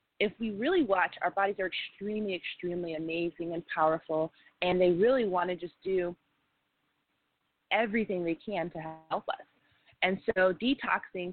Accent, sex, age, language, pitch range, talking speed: American, female, 20-39, English, 160-200 Hz, 150 wpm